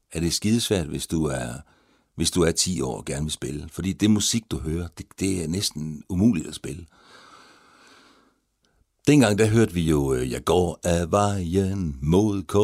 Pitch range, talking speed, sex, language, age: 75-105 Hz, 175 wpm, male, Danish, 60-79